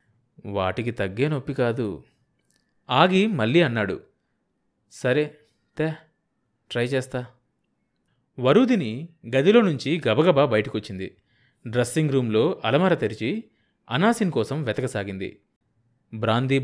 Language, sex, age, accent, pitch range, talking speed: Telugu, male, 30-49, native, 115-165 Hz, 85 wpm